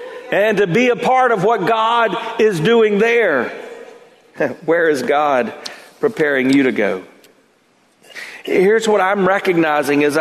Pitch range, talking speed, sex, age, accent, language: 160-235 Hz, 135 wpm, male, 50-69, American, English